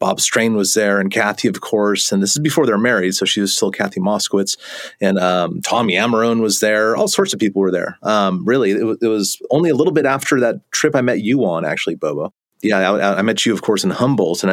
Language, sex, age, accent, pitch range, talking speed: English, male, 30-49, American, 95-115 Hz, 255 wpm